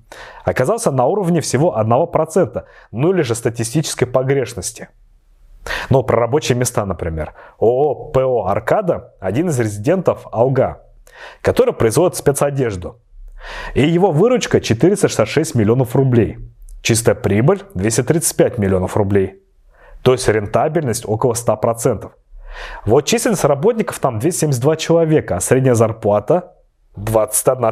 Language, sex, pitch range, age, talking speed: Russian, male, 110-150 Hz, 30-49, 115 wpm